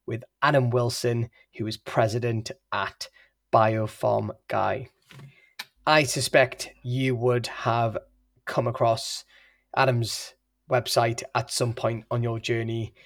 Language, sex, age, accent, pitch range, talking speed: English, male, 20-39, British, 120-135 Hz, 110 wpm